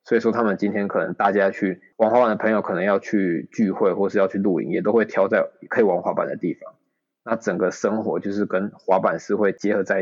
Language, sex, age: Chinese, male, 20-39